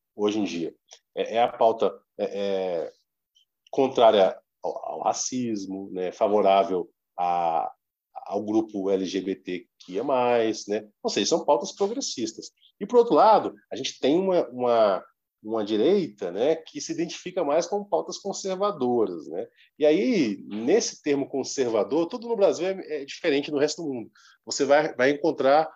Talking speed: 140 wpm